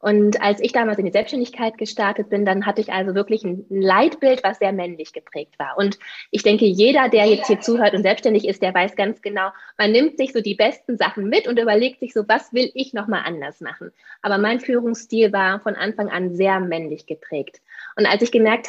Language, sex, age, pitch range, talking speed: German, female, 20-39, 195-230 Hz, 220 wpm